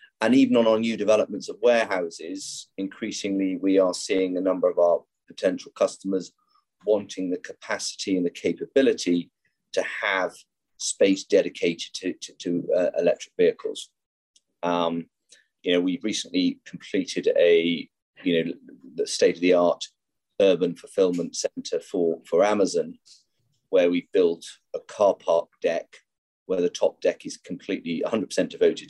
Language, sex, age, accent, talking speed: English, male, 30-49, British, 135 wpm